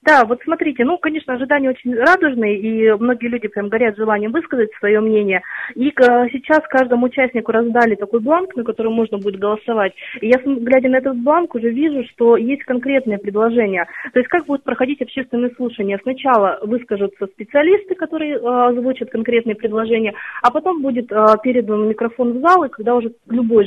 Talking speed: 165 wpm